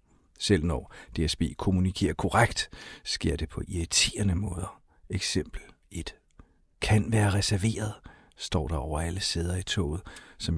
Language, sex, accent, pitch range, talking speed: Danish, male, native, 95-120 Hz, 130 wpm